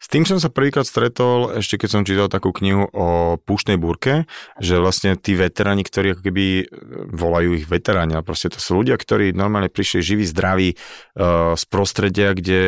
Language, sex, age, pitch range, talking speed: Slovak, male, 30-49, 90-100 Hz, 185 wpm